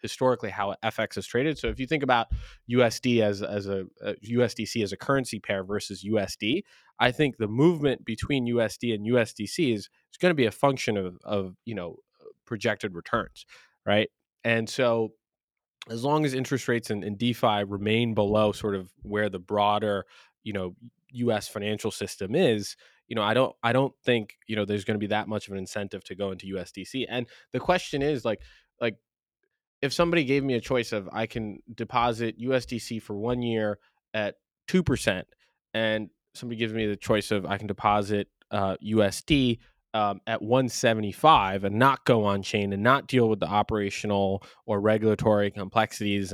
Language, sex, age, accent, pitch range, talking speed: English, male, 20-39, American, 105-125 Hz, 185 wpm